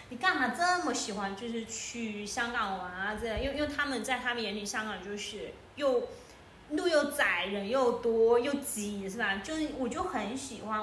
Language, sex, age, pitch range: Chinese, female, 20-39, 210-255 Hz